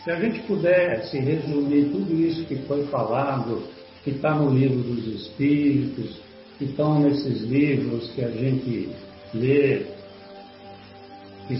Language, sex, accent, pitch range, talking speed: Portuguese, male, Brazilian, 120-150 Hz, 135 wpm